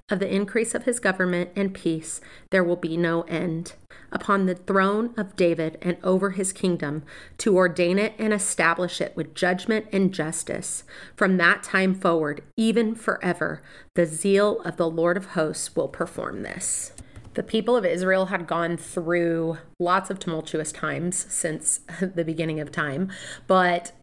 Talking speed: 160 wpm